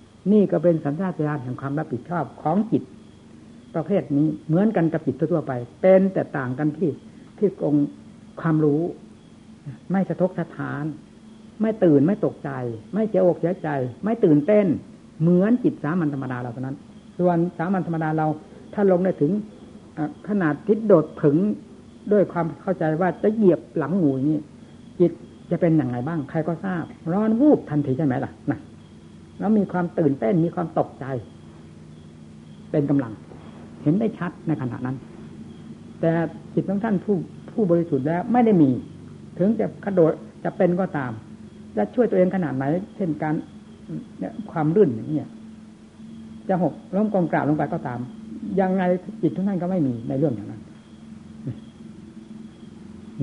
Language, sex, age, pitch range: Thai, female, 60-79, 140-195 Hz